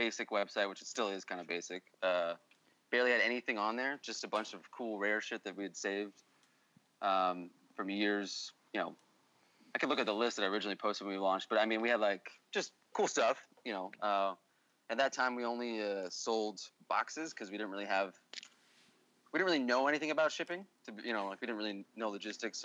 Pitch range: 95-115 Hz